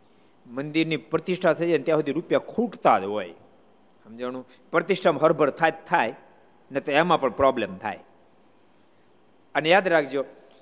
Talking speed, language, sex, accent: 145 wpm, Gujarati, male, native